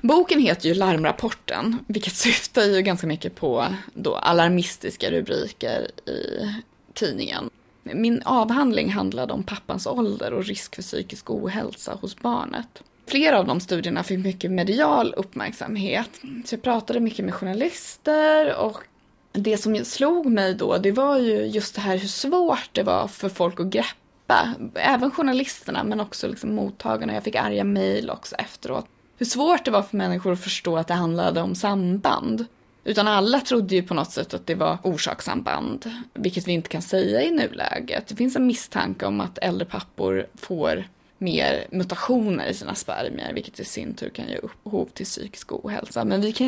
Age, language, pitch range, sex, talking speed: 20-39, Swedish, 180-250 Hz, female, 160 wpm